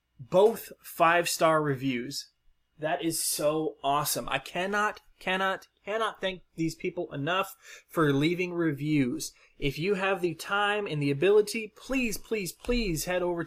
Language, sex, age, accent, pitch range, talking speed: English, male, 20-39, American, 135-190 Hz, 140 wpm